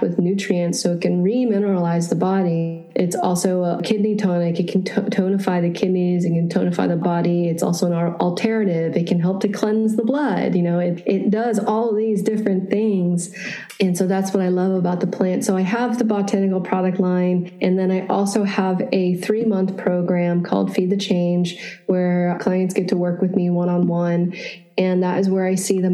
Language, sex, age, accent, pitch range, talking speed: English, female, 20-39, American, 175-195 Hz, 205 wpm